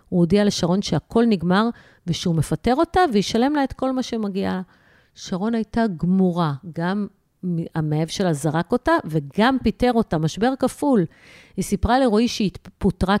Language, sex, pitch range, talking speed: Hebrew, female, 170-220 Hz, 145 wpm